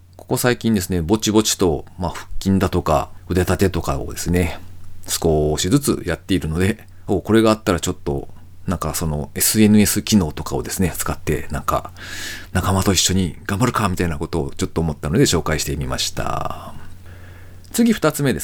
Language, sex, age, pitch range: Japanese, male, 40-59, 90-150 Hz